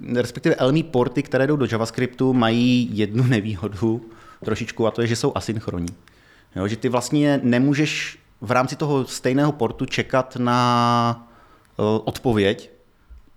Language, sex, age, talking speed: Czech, male, 30-49, 130 wpm